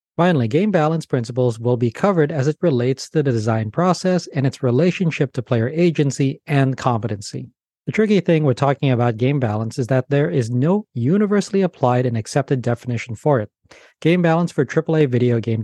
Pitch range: 125-170 Hz